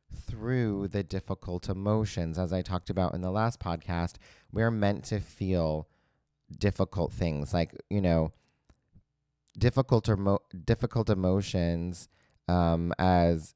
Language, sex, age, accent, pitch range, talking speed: English, male, 30-49, American, 90-115 Hz, 125 wpm